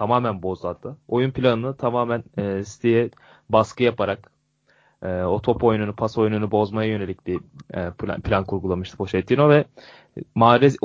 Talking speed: 145 wpm